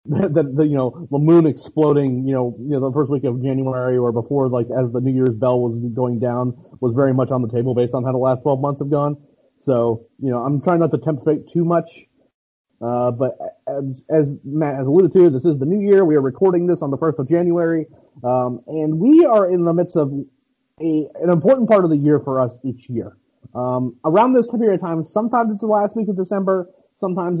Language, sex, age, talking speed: English, male, 30-49, 235 wpm